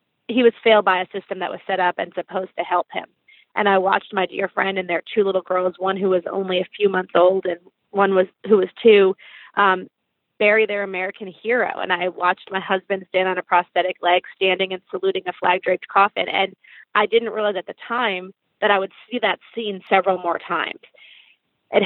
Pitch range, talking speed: 185-220 Hz, 215 wpm